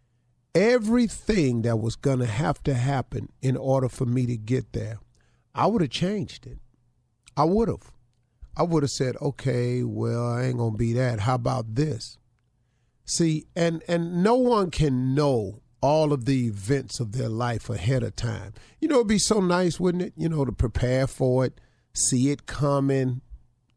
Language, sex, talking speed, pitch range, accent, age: English, male, 185 wpm, 120-150 Hz, American, 40-59